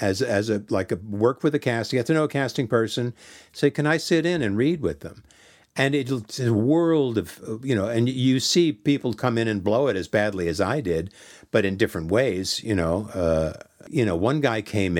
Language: English